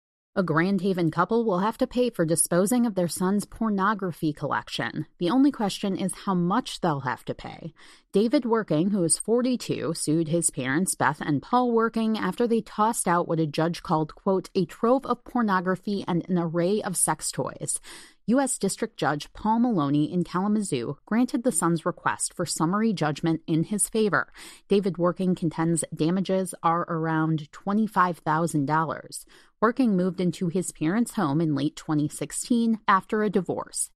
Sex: female